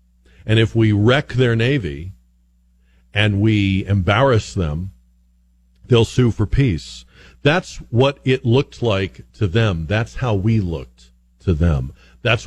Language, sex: English, male